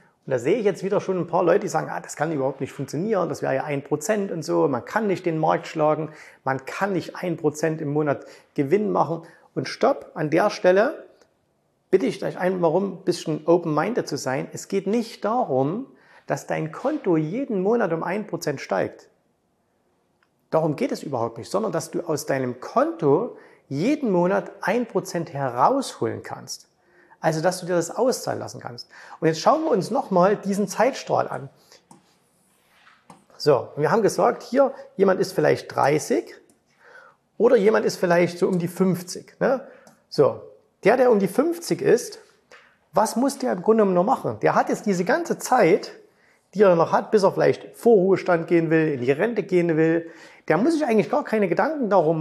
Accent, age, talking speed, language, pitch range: German, 30-49, 190 wpm, German, 165-240 Hz